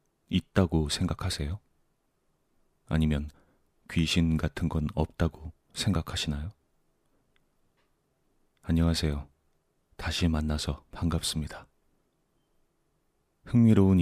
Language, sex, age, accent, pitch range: Korean, male, 30-49, native, 75-90 Hz